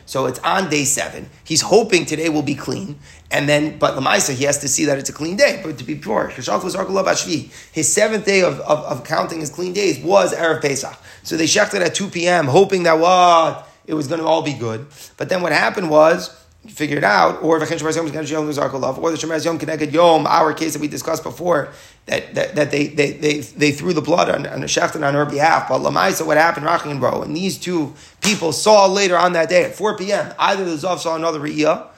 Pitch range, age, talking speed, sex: 150-190 Hz, 30-49, 225 wpm, male